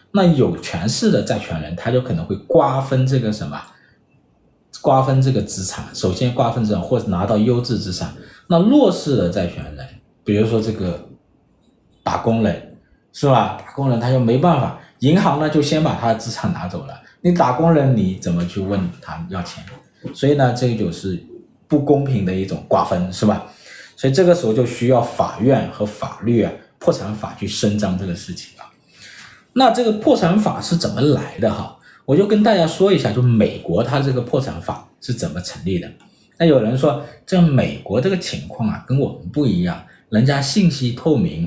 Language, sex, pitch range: Chinese, male, 105-160 Hz